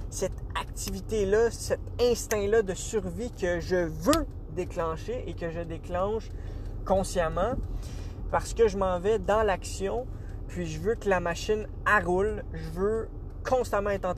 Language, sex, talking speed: English, male, 150 wpm